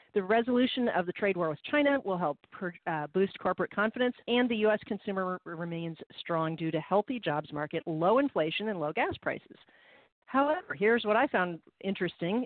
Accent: American